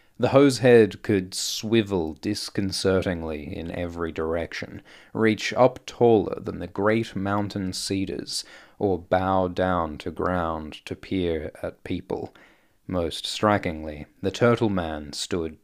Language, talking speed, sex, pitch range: English, 125 wpm, male, 90-110 Hz